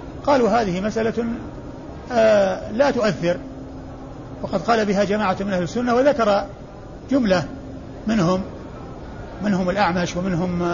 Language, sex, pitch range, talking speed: Arabic, male, 180-225 Hz, 100 wpm